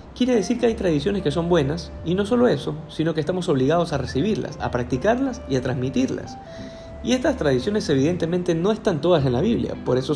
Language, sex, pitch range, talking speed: Spanish, male, 130-185 Hz, 205 wpm